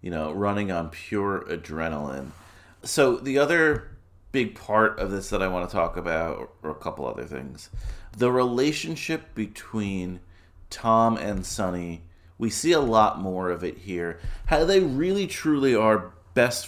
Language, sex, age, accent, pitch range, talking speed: English, male, 30-49, American, 90-145 Hz, 160 wpm